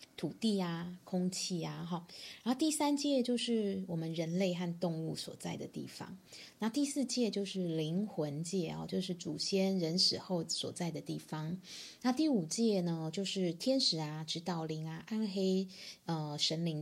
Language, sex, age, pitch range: Chinese, female, 20-39, 165-205 Hz